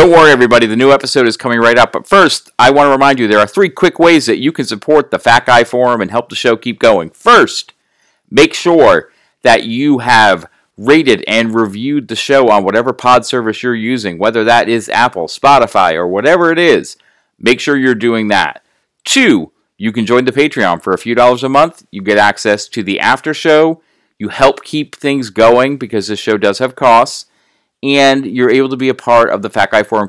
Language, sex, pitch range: English, male, 110-145 Hz